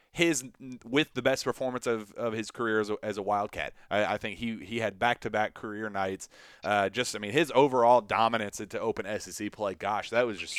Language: English